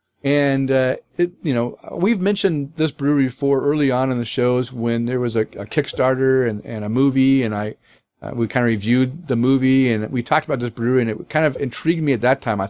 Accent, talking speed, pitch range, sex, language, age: American, 235 wpm, 115-140 Hz, male, English, 40-59